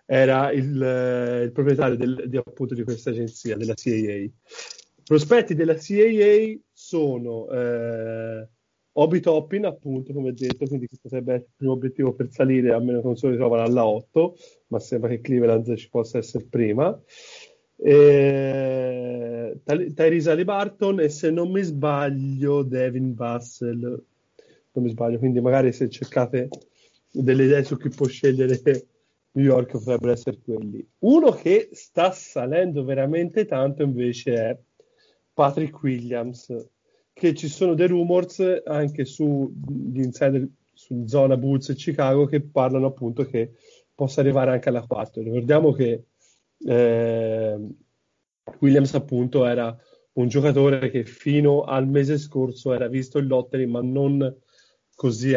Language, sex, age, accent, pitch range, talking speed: Italian, male, 30-49, native, 120-145 Hz, 135 wpm